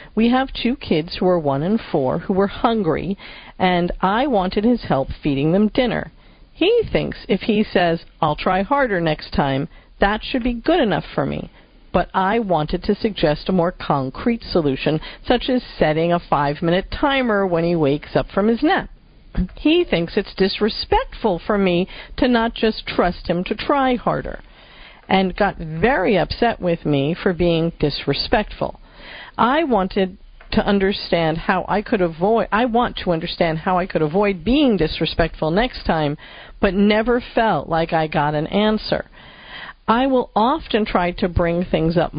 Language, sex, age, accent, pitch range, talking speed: English, female, 50-69, American, 170-225 Hz, 170 wpm